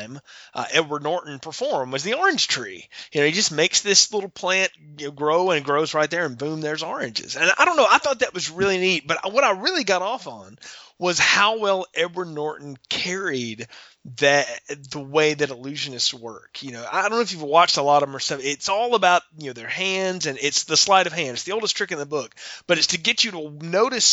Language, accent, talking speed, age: English, American, 245 wpm, 30-49